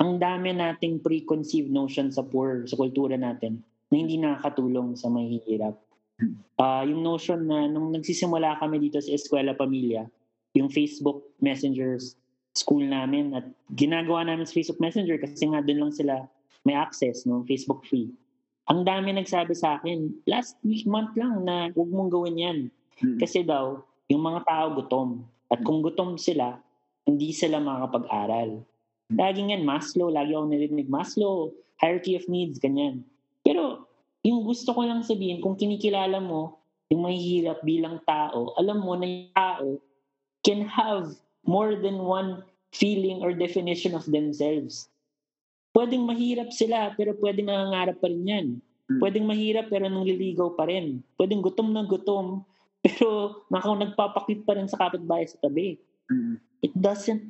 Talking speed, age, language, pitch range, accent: 155 wpm, 20-39, Filipino, 140-195 Hz, native